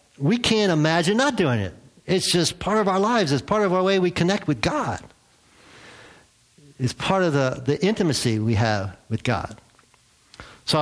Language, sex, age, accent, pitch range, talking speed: English, male, 50-69, American, 115-155 Hz, 175 wpm